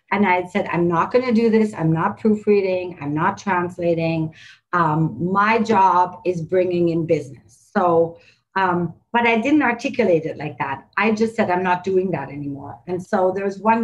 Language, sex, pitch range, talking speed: English, female, 165-210 Hz, 190 wpm